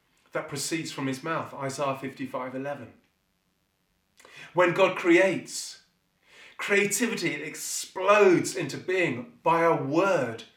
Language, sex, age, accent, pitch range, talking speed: English, male, 30-49, British, 130-175 Hz, 100 wpm